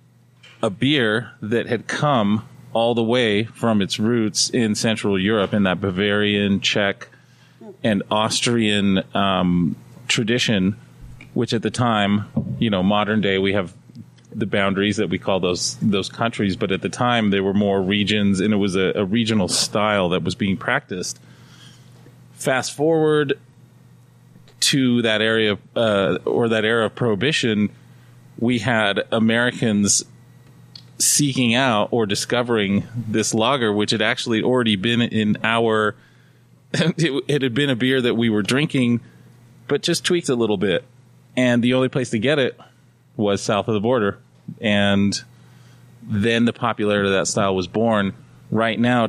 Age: 30-49